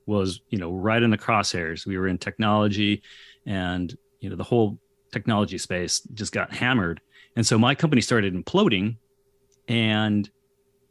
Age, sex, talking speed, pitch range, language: 30-49, male, 155 wpm, 100-135 Hz, English